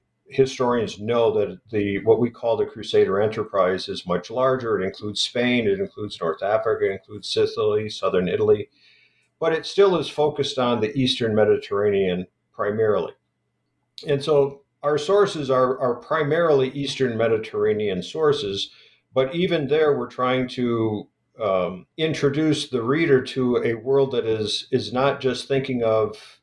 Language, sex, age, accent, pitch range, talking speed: English, male, 50-69, American, 110-150 Hz, 150 wpm